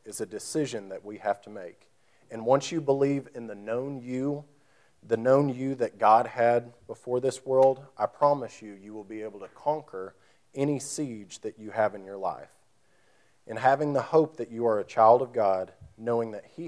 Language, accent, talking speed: English, American, 200 wpm